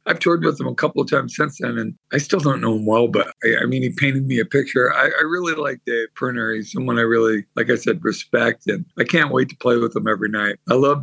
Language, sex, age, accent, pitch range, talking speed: English, male, 50-69, American, 115-145 Hz, 285 wpm